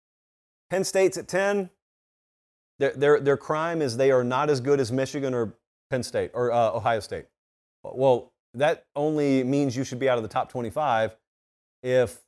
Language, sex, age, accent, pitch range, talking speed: English, male, 40-59, American, 115-145 Hz, 175 wpm